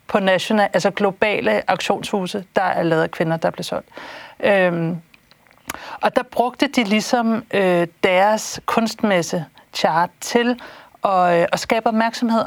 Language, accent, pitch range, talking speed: Danish, native, 180-225 Hz, 135 wpm